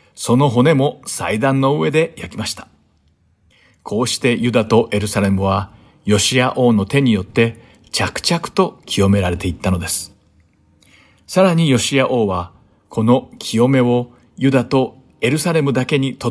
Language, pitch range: Japanese, 105-140 Hz